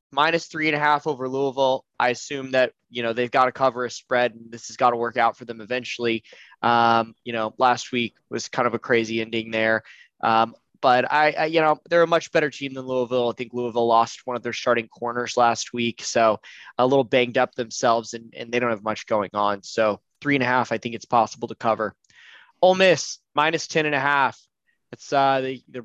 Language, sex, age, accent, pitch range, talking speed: English, male, 20-39, American, 115-140 Hz, 230 wpm